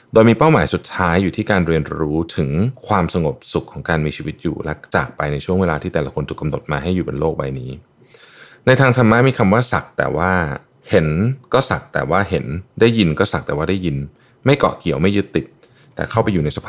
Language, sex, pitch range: Thai, male, 75-115 Hz